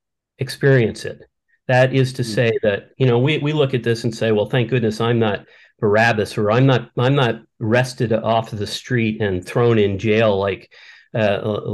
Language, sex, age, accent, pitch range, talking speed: English, male, 50-69, American, 110-130 Hz, 190 wpm